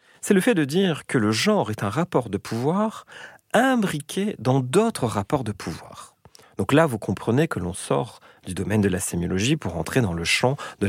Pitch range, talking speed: 100-155 Hz, 205 wpm